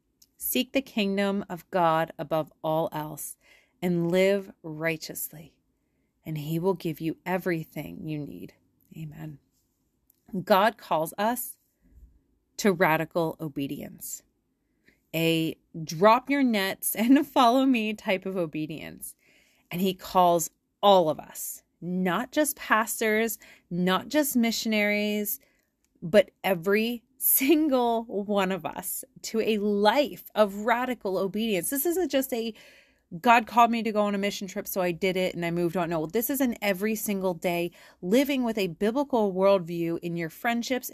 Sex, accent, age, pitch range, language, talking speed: female, American, 30-49, 175-235 Hz, English, 140 wpm